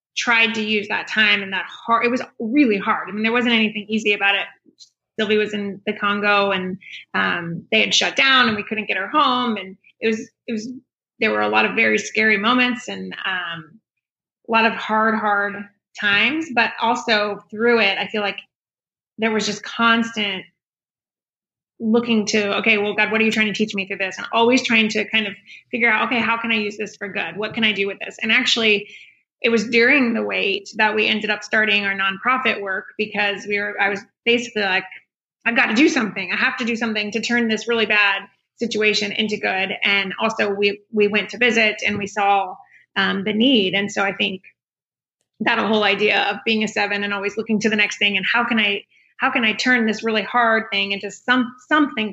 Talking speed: 220 wpm